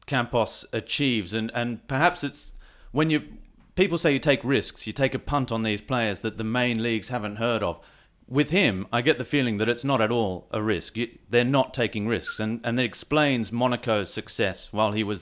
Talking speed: 210 wpm